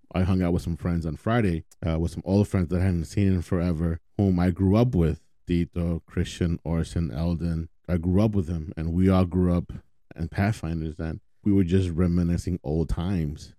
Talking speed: 210 wpm